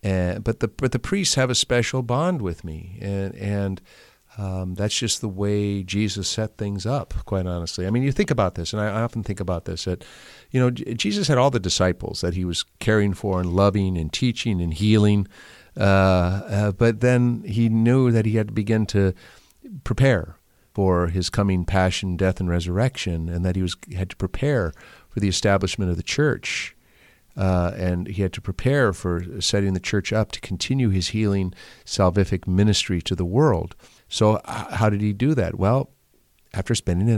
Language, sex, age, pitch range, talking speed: English, male, 50-69, 90-115 Hz, 190 wpm